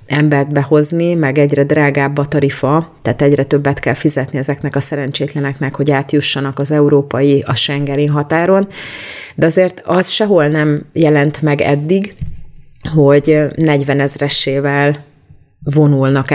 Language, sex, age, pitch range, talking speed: Hungarian, female, 30-49, 135-150 Hz, 125 wpm